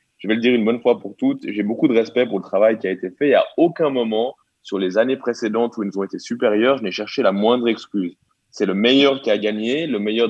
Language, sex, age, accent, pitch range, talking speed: French, male, 20-39, French, 115-170 Hz, 280 wpm